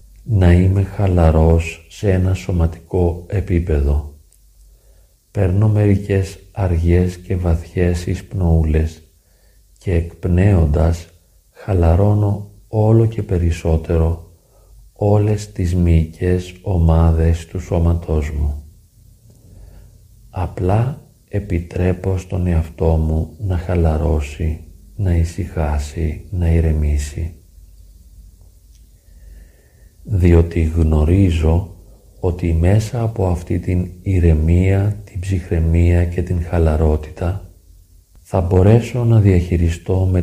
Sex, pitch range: male, 80-95 Hz